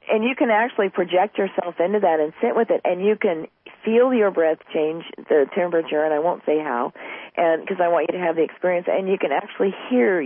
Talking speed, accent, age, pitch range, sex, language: 235 wpm, American, 40-59, 165-205 Hz, female, English